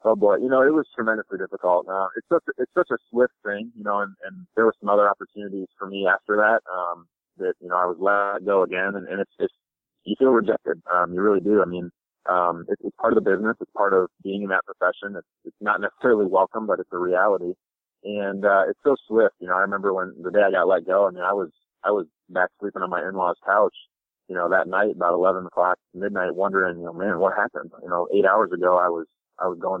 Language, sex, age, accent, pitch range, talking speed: English, male, 30-49, American, 90-105 Hz, 255 wpm